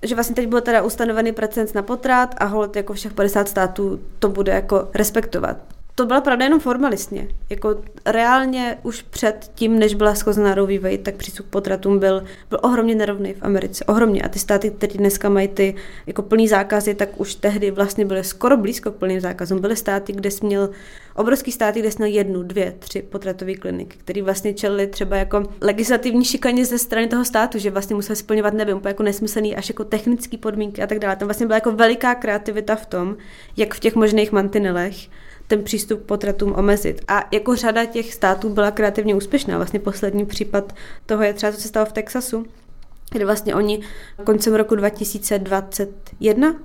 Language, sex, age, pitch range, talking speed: Czech, female, 20-39, 200-225 Hz, 185 wpm